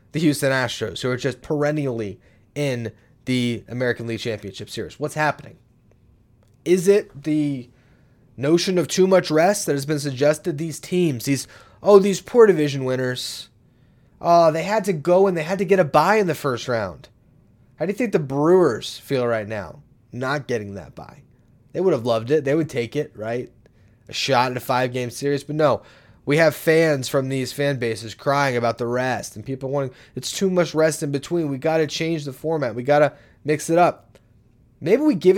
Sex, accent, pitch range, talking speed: male, American, 120-160 Hz, 200 wpm